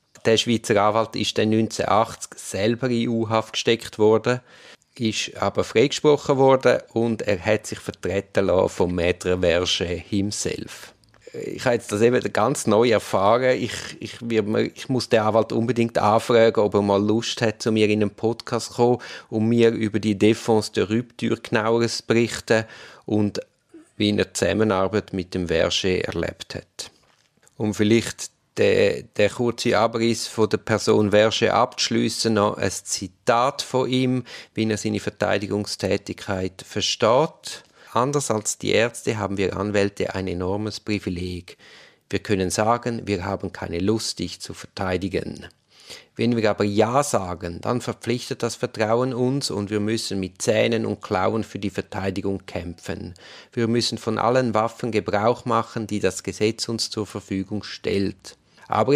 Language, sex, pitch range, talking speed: German, male, 100-115 Hz, 150 wpm